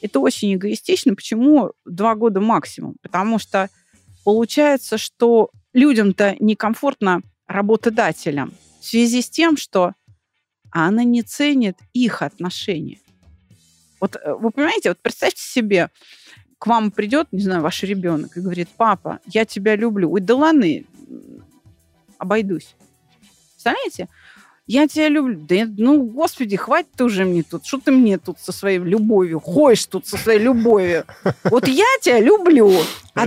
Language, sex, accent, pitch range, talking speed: Russian, female, native, 190-265 Hz, 135 wpm